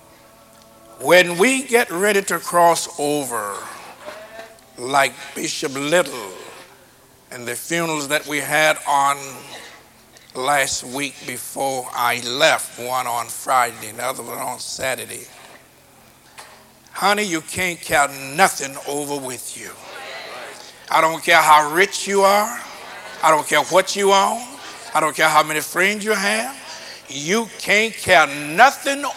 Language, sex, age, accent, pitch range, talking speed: English, male, 60-79, American, 140-220 Hz, 130 wpm